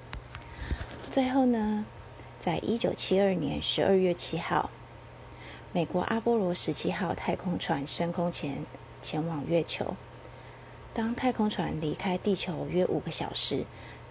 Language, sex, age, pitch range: Chinese, female, 30-49, 165-215 Hz